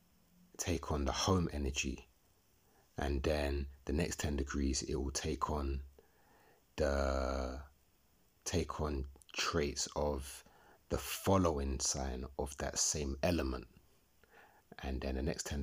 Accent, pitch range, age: British, 70-85 Hz, 30-49